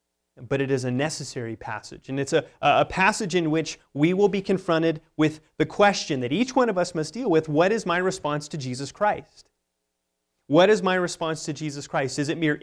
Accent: American